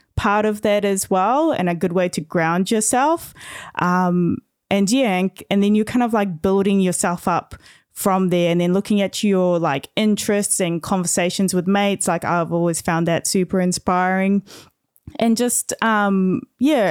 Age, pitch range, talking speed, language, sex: 20-39, 165-195 Hz, 175 wpm, English, female